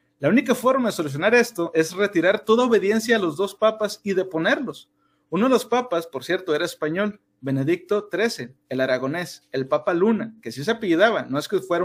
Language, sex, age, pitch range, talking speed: Spanish, male, 40-59, 160-220 Hz, 195 wpm